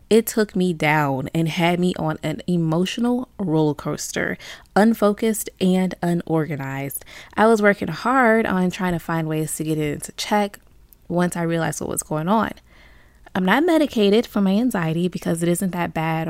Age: 20-39